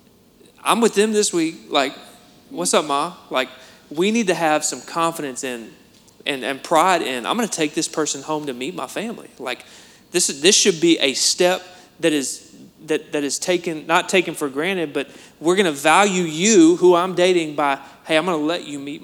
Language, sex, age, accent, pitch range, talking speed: English, male, 30-49, American, 145-185 Hz, 210 wpm